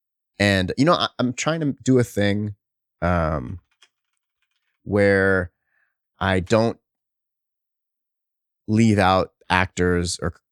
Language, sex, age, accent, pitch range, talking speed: English, male, 30-49, American, 90-115 Hz, 95 wpm